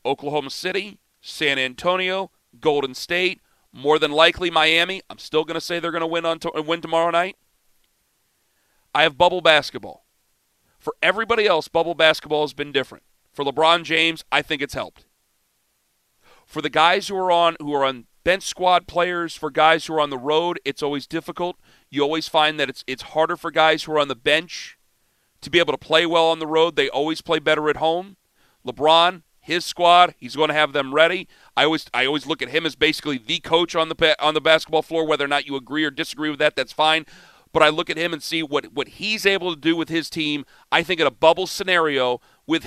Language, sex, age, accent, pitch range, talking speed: English, male, 40-59, American, 150-180 Hz, 210 wpm